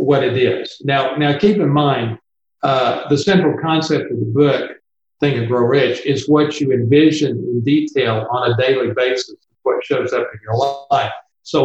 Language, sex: English, male